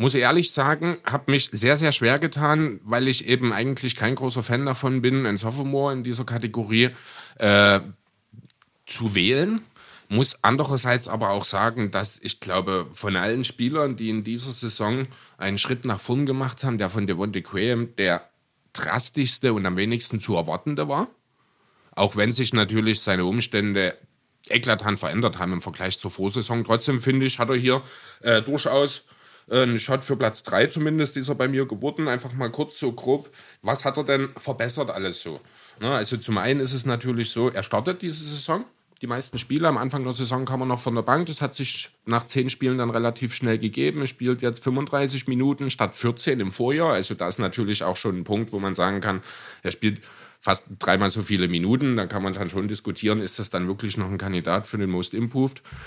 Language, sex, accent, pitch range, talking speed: German, male, German, 105-135 Hz, 195 wpm